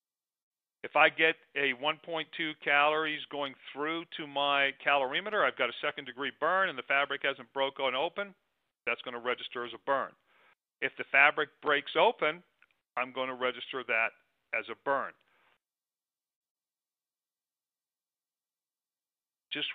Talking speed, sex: 130 wpm, male